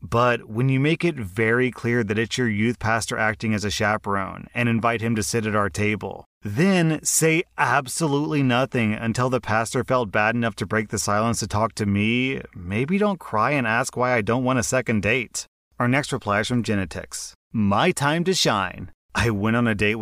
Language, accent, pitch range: English, American, 105-125 Hz